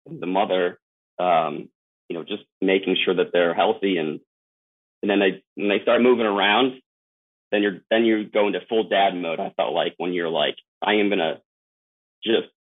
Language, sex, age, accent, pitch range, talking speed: English, male, 30-49, American, 95-120 Hz, 185 wpm